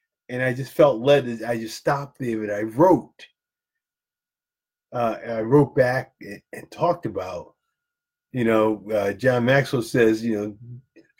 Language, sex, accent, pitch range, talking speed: English, male, American, 115-170 Hz, 160 wpm